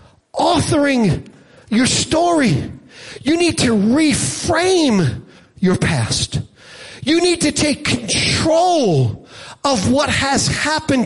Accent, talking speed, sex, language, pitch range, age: American, 100 wpm, male, English, 185-300 Hz, 40-59